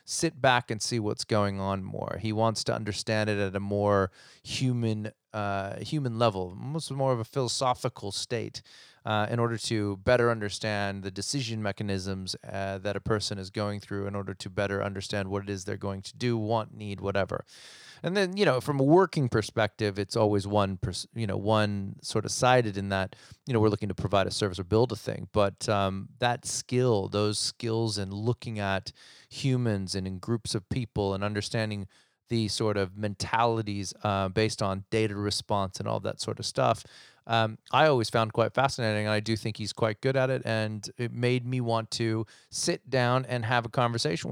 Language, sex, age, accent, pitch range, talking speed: English, male, 30-49, American, 100-120 Hz, 200 wpm